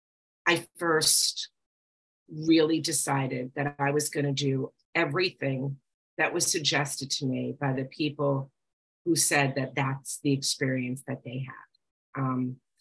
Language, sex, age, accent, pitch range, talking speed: English, female, 40-59, American, 135-165 Hz, 135 wpm